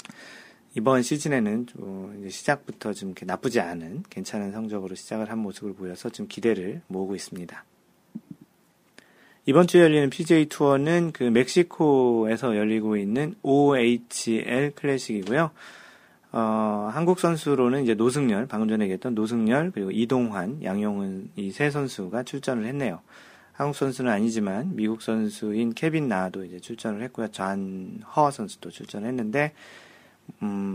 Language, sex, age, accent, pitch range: Korean, male, 40-59, native, 105-140 Hz